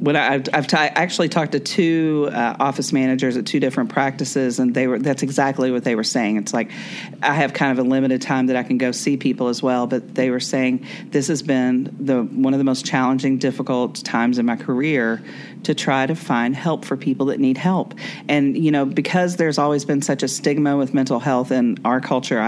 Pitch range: 125-165 Hz